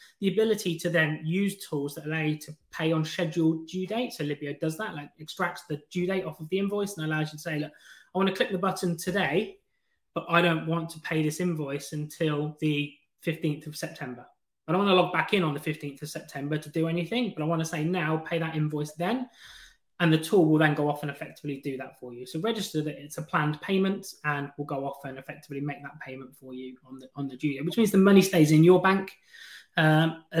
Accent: British